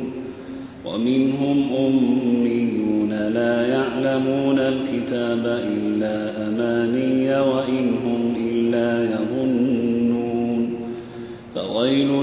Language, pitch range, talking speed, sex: Arabic, 120-135 Hz, 60 wpm, male